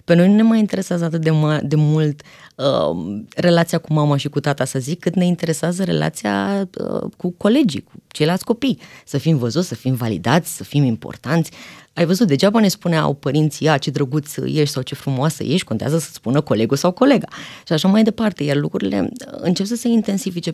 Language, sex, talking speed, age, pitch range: Romanian, female, 200 wpm, 20-39, 145-195 Hz